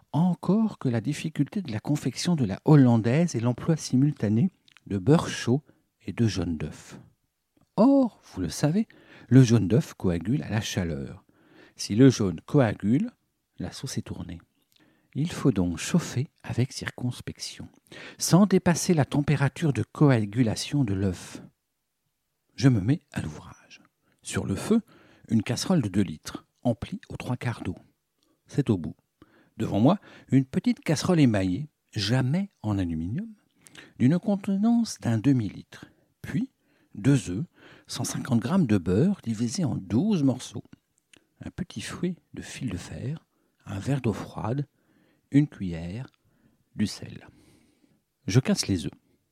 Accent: French